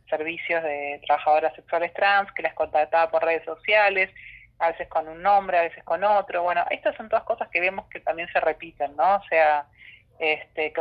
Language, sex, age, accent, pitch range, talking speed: Spanish, female, 30-49, Argentinian, 150-190 Hz, 200 wpm